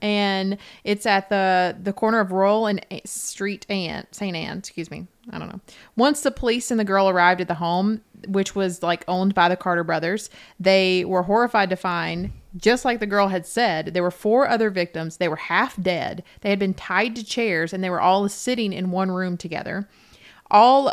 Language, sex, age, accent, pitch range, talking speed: English, female, 30-49, American, 180-210 Hz, 205 wpm